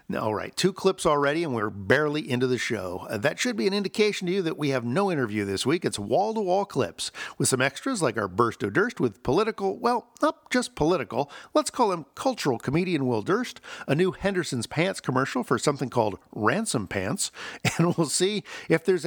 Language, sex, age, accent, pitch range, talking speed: English, male, 50-69, American, 130-195 Hz, 205 wpm